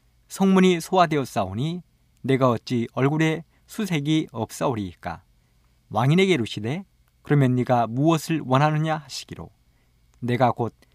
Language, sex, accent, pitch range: Korean, male, native, 105-165 Hz